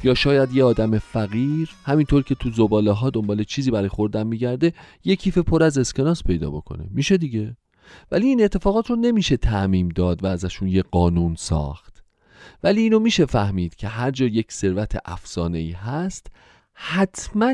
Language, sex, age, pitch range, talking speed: Persian, male, 40-59, 95-140 Hz, 160 wpm